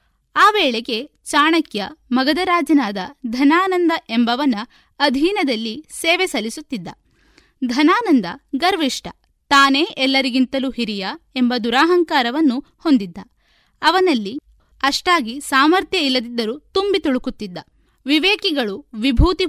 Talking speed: 75 wpm